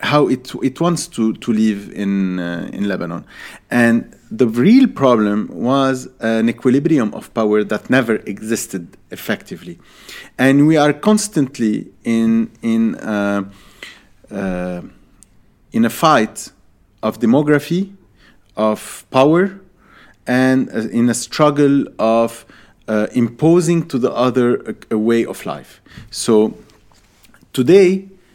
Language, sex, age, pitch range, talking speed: English, male, 40-59, 105-140 Hz, 120 wpm